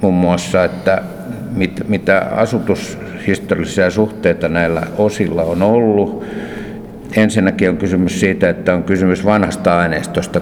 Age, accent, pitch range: 60-79, native, 90-105 Hz